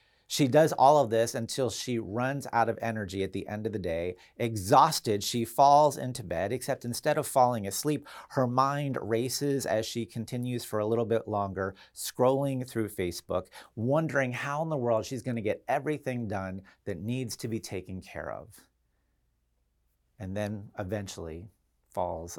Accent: American